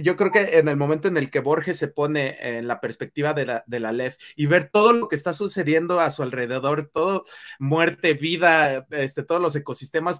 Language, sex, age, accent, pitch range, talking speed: Spanish, male, 30-49, Mexican, 145-180 Hz, 205 wpm